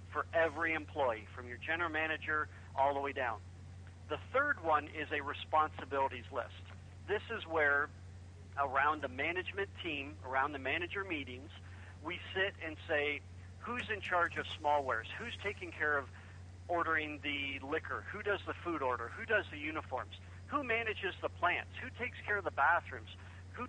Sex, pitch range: male, 90-145 Hz